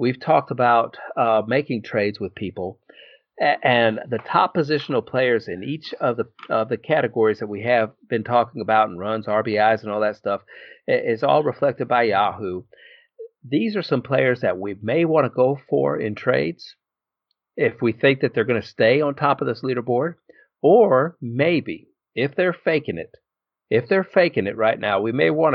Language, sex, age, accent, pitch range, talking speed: English, male, 50-69, American, 110-150 Hz, 185 wpm